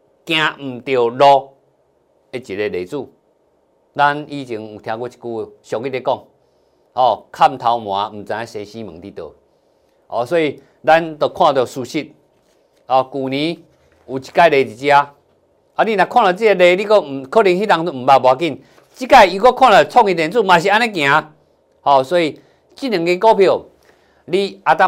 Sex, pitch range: male, 135-185 Hz